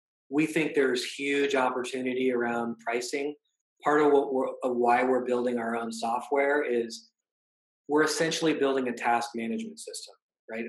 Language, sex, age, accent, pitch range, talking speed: English, male, 20-39, American, 125-155 Hz, 150 wpm